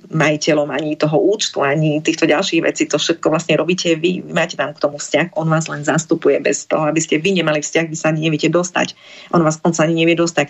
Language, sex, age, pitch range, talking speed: Slovak, female, 30-49, 155-185 Hz, 235 wpm